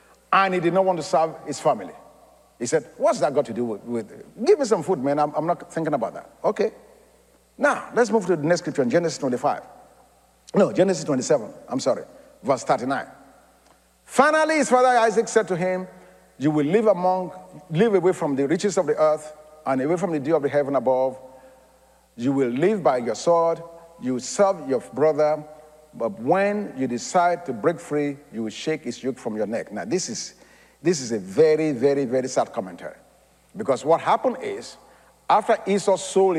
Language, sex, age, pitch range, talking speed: English, male, 50-69, 135-185 Hz, 195 wpm